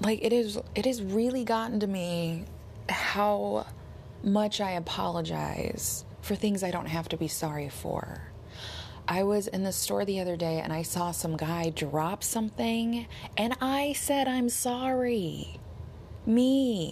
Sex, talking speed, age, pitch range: female, 150 wpm, 20-39, 160-240 Hz